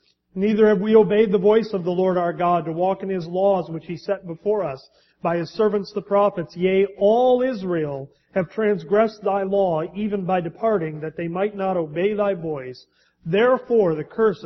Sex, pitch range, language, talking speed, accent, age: male, 160-200 Hz, English, 190 wpm, American, 40-59